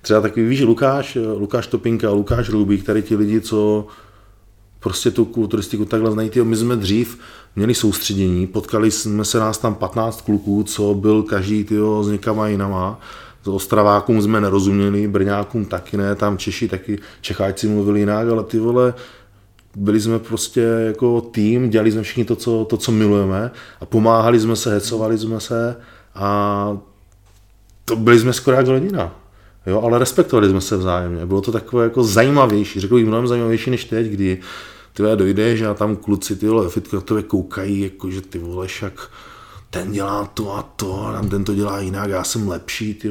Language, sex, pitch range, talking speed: Czech, male, 100-115 Hz, 175 wpm